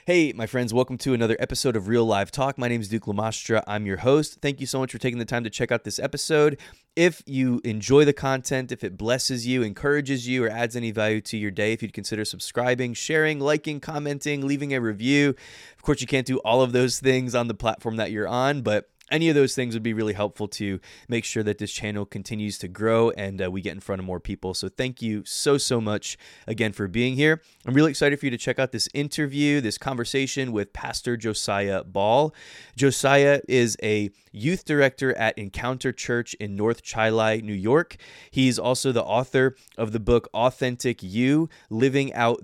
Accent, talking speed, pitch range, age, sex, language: American, 215 wpm, 110-135 Hz, 20-39, male, English